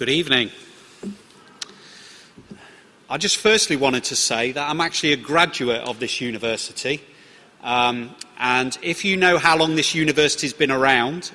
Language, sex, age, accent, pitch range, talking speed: English, male, 30-49, British, 130-165 Hz, 150 wpm